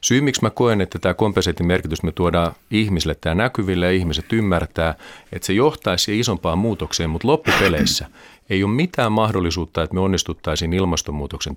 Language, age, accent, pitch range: Finnish, 40-59, native, 85-110 Hz